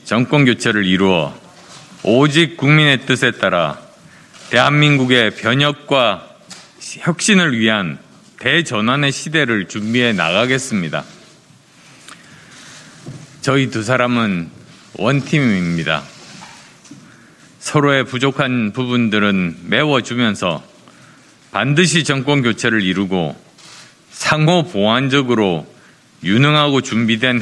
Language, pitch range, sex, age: Korean, 110-145 Hz, male, 50-69